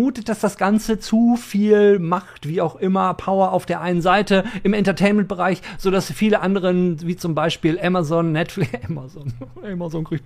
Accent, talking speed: German, 160 wpm